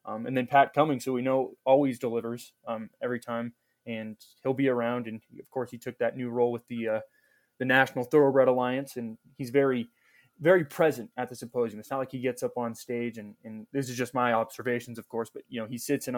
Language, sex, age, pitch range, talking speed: English, male, 20-39, 115-135 Hz, 235 wpm